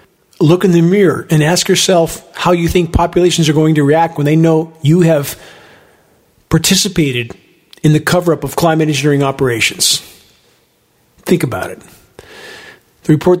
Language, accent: English, American